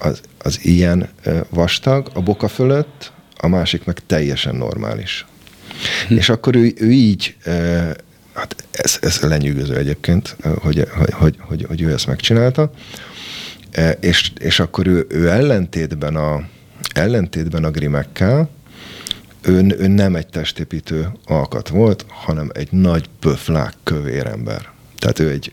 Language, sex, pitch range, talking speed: Hungarian, male, 80-105 Hz, 130 wpm